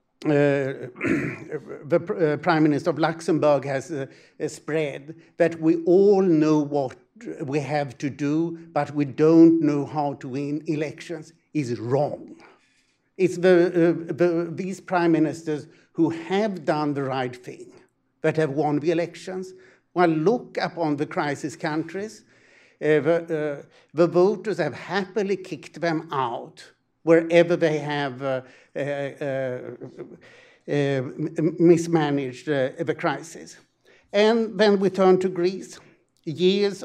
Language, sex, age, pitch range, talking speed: English, male, 60-79, 150-175 Hz, 130 wpm